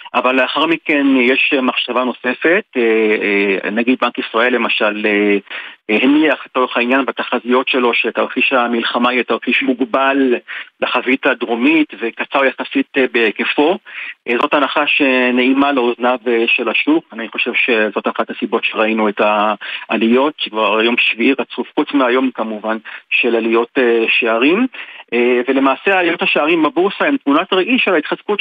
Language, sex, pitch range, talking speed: Hebrew, male, 120-175 Hz, 125 wpm